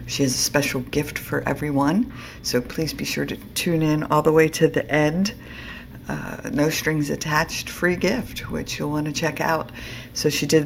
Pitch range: 130-155 Hz